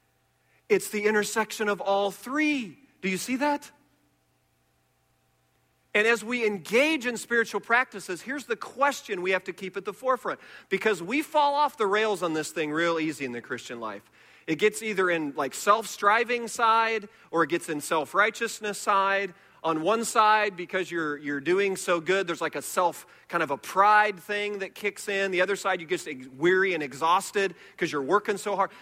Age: 40-59